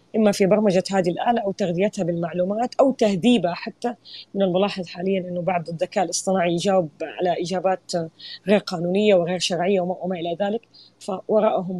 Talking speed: 150 wpm